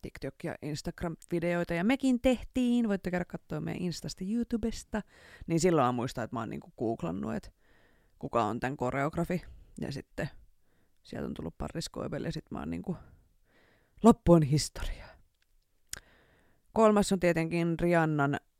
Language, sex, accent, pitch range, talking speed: Finnish, female, native, 135-185 Hz, 140 wpm